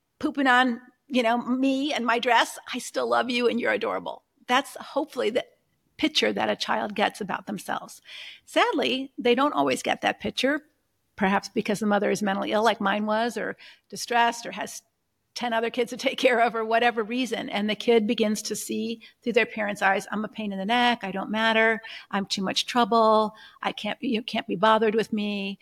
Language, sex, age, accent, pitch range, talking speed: English, female, 50-69, American, 210-245 Hz, 205 wpm